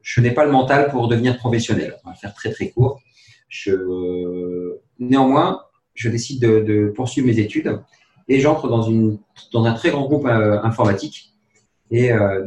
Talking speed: 170 wpm